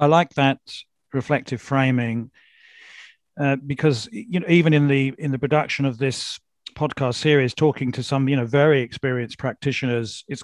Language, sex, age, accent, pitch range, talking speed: English, male, 40-59, British, 120-145 Hz, 160 wpm